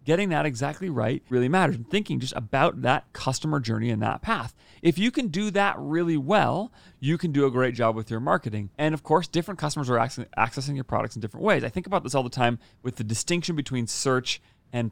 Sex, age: male, 30-49